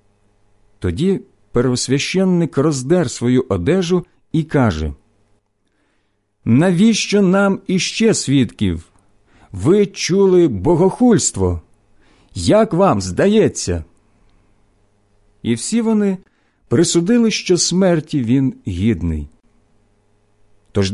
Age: 50-69